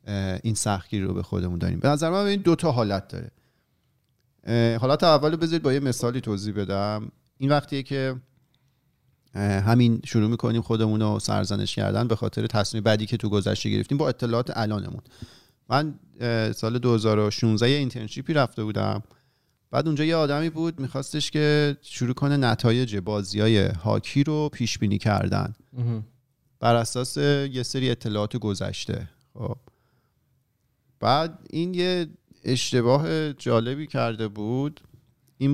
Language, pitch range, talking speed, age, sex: Persian, 105-135 Hz, 135 wpm, 40-59, male